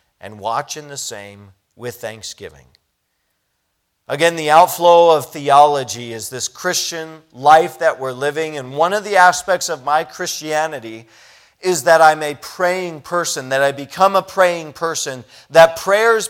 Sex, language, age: male, English, 40-59